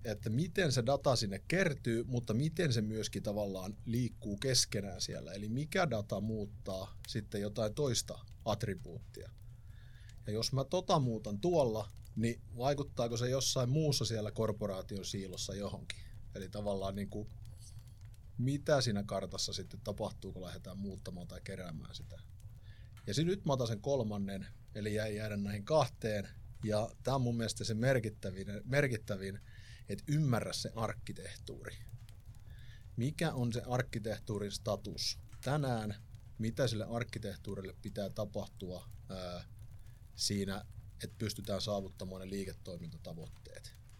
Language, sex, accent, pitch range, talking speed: Finnish, male, native, 100-120 Hz, 130 wpm